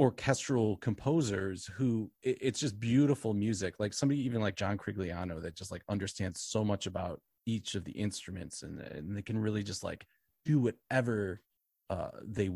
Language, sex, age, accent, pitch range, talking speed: English, male, 30-49, American, 95-115 Hz, 165 wpm